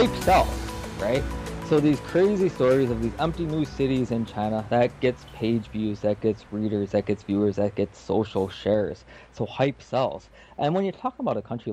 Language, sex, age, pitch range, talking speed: English, male, 20-39, 105-130 Hz, 195 wpm